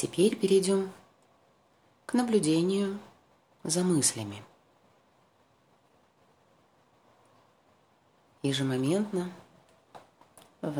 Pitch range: 120-175 Hz